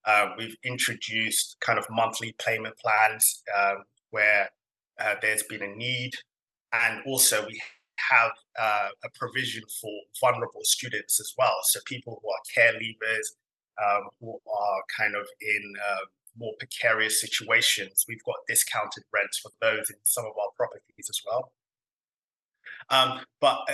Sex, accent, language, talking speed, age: male, British, English, 145 wpm, 20-39